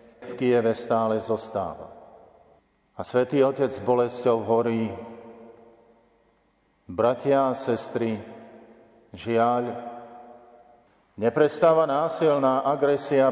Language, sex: Slovak, male